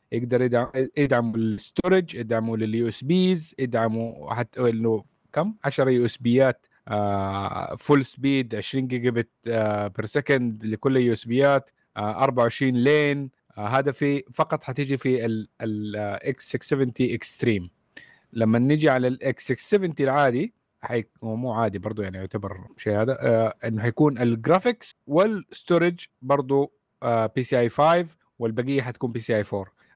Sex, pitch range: male, 115-145 Hz